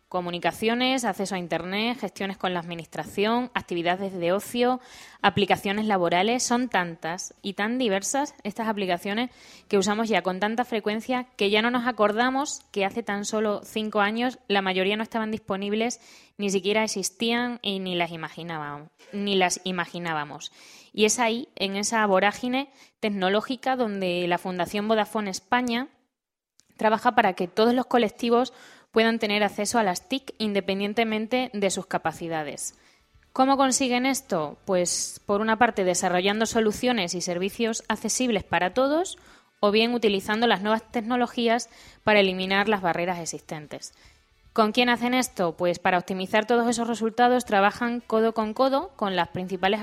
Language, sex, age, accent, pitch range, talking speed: Spanish, female, 10-29, Spanish, 190-240 Hz, 145 wpm